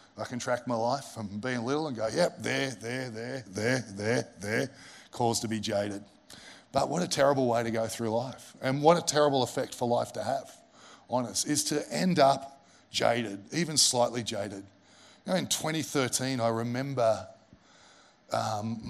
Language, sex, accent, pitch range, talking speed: English, male, Australian, 115-140 Hz, 180 wpm